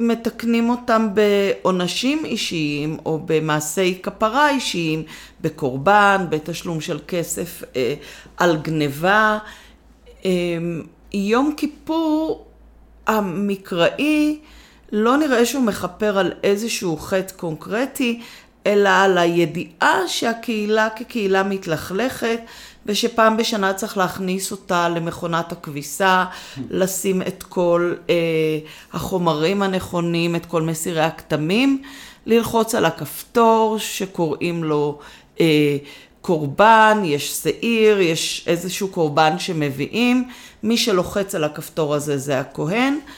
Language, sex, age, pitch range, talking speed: Hebrew, female, 40-59, 165-225 Hz, 95 wpm